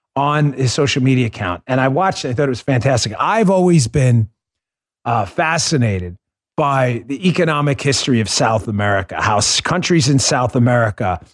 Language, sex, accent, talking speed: English, male, American, 165 wpm